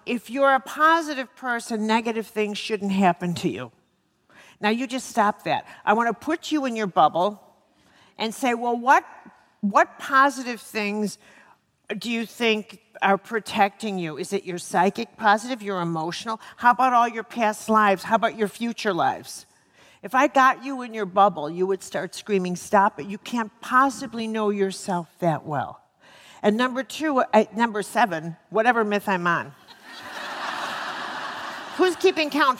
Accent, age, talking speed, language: American, 50-69, 160 wpm, English